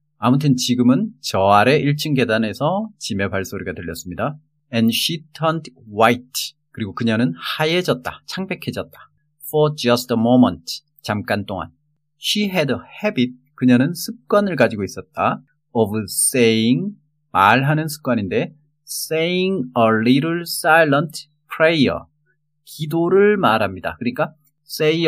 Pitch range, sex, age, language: 115-155 Hz, male, 30-49, Korean